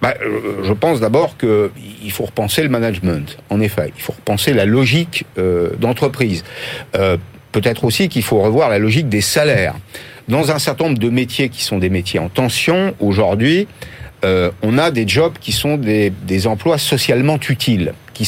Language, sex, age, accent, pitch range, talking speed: French, male, 50-69, French, 100-140 Hz, 175 wpm